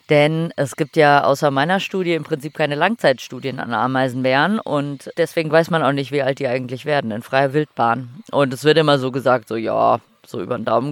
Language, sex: German, female